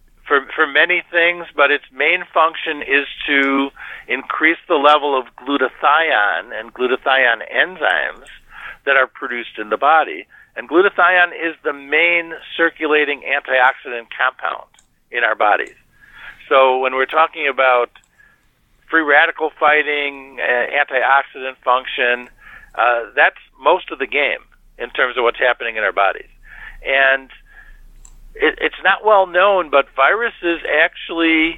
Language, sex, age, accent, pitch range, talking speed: English, male, 50-69, American, 135-170 Hz, 125 wpm